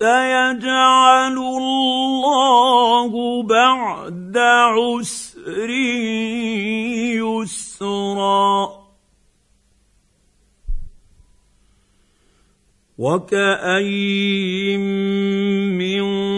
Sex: male